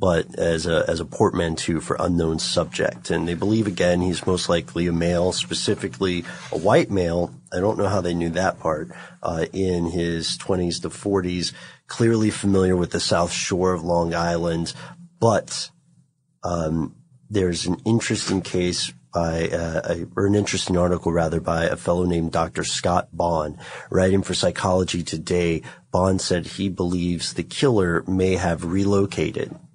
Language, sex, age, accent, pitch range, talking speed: English, male, 30-49, American, 85-115 Hz, 160 wpm